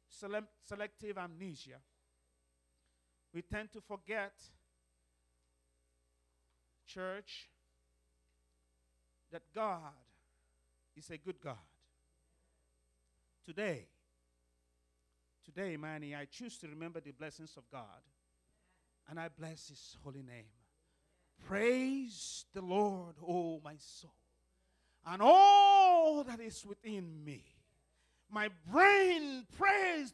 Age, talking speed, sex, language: 50-69, 90 wpm, male, English